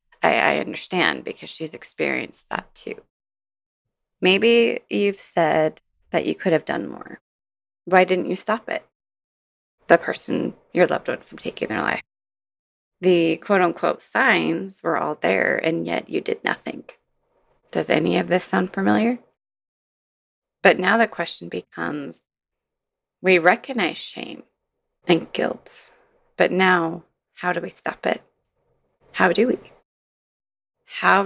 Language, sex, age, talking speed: English, female, 20-39, 130 wpm